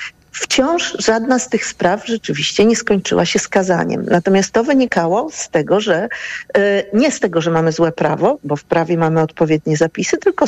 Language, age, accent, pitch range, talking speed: Polish, 50-69, native, 175-215 Hz, 170 wpm